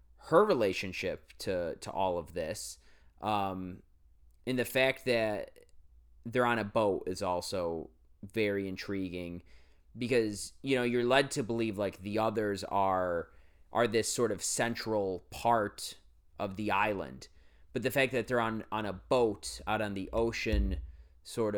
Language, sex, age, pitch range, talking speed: English, male, 30-49, 80-110 Hz, 150 wpm